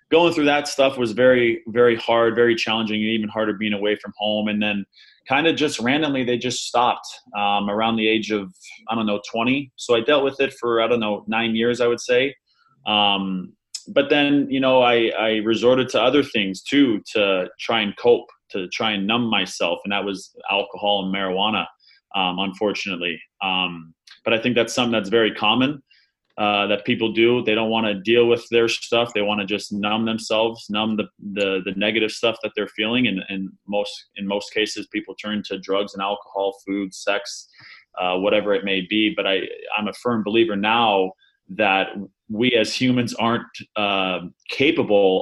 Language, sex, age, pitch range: English, male, 20-39, 100-120 Hz